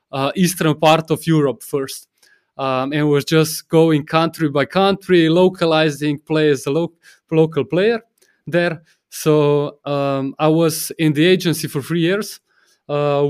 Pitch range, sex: 145-170 Hz, male